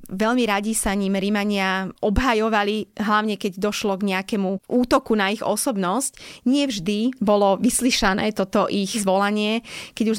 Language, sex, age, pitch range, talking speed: Slovak, female, 20-39, 190-220 Hz, 140 wpm